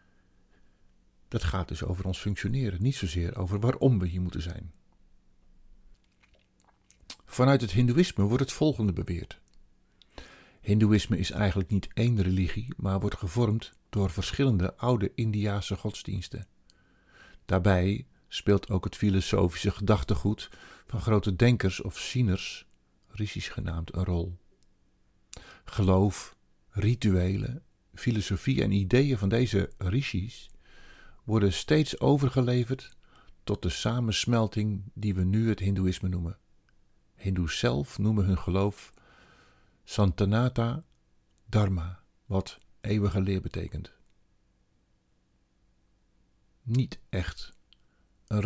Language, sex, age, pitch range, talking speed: Dutch, male, 50-69, 95-110 Hz, 105 wpm